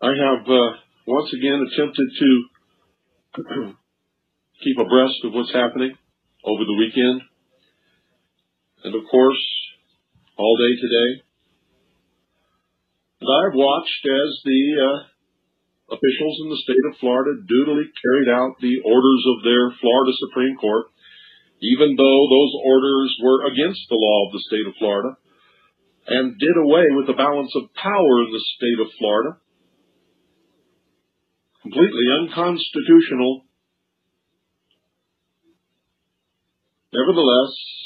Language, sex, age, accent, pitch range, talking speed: Dutch, male, 50-69, American, 120-140 Hz, 115 wpm